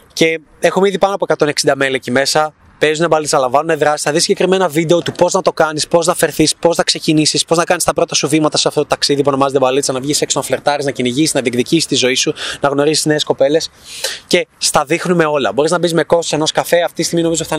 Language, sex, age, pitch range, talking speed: Greek, male, 20-39, 150-185 Hz, 255 wpm